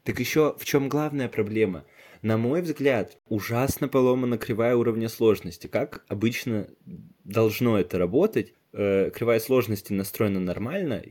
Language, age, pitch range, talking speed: Russian, 20-39, 100-120 Hz, 125 wpm